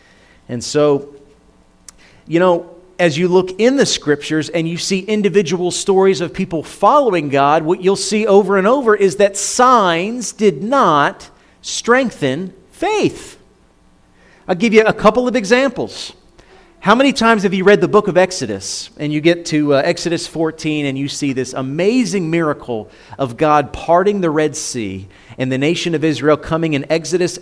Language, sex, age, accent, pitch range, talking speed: English, male, 40-59, American, 145-200 Hz, 165 wpm